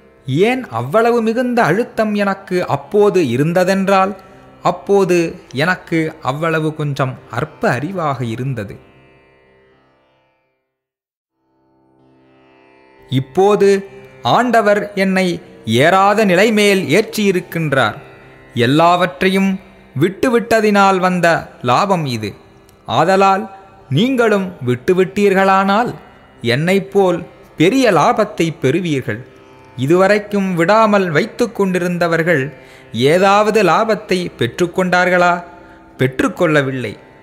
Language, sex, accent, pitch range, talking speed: Tamil, male, native, 140-205 Hz, 70 wpm